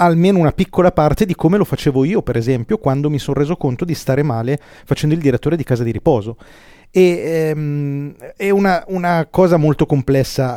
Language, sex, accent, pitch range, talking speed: Italian, male, native, 135-180 Hz, 195 wpm